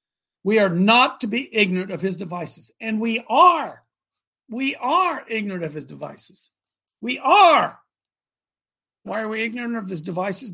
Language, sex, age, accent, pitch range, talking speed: English, male, 60-79, American, 185-245 Hz, 155 wpm